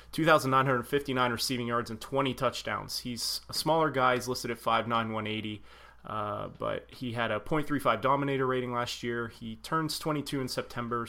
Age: 30-49